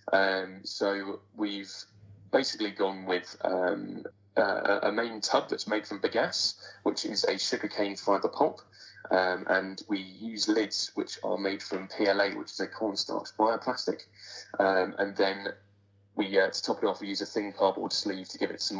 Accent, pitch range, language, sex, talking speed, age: British, 95-110 Hz, English, male, 175 wpm, 20-39